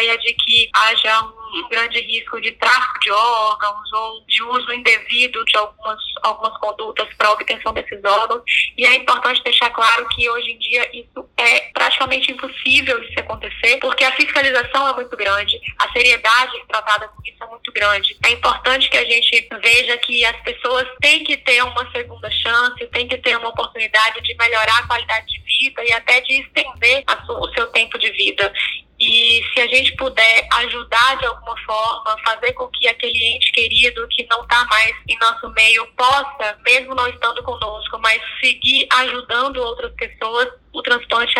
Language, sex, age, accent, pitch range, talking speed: Portuguese, female, 10-29, Brazilian, 225-275 Hz, 175 wpm